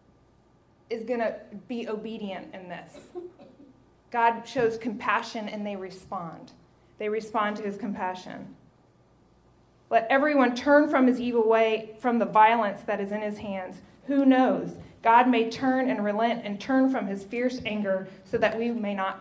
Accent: American